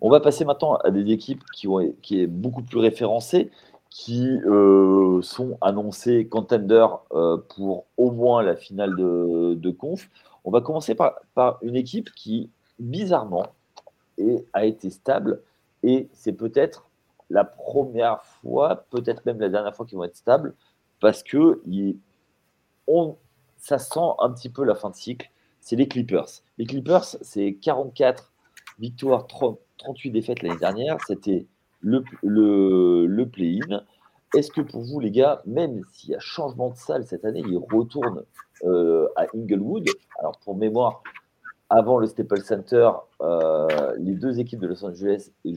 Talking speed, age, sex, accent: 160 wpm, 40-59, male, French